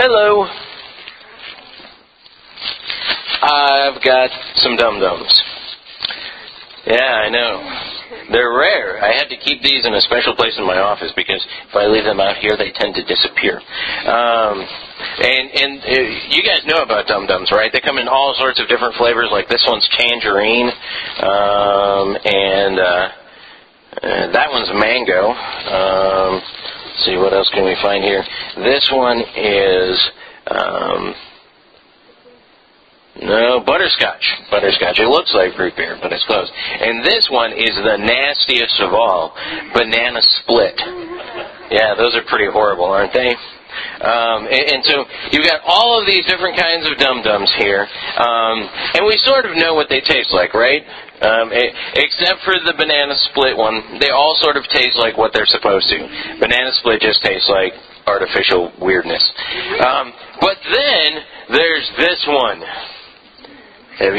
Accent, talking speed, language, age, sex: American, 150 wpm, English, 40-59, male